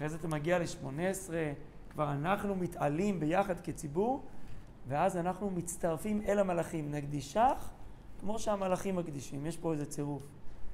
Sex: male